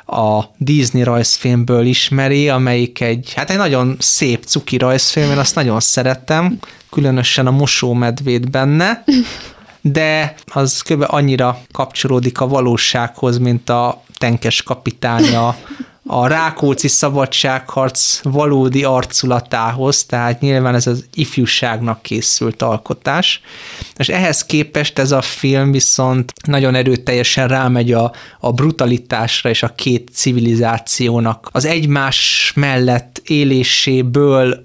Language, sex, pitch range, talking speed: Hungarian, male, 120-140 Hz, 110 wpm